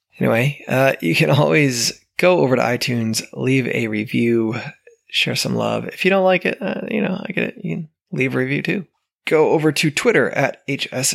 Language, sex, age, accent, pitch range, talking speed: English, male, 20-39, American, 110-160 Hz, 205 wpm